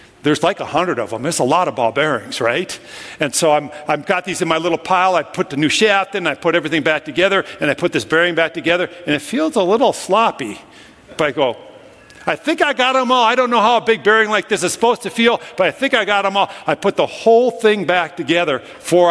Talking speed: 265 wpm